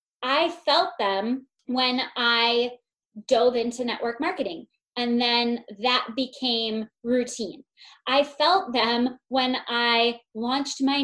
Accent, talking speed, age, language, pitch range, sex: American, 115 wpm, 20-39, English, 240-300 Hz, female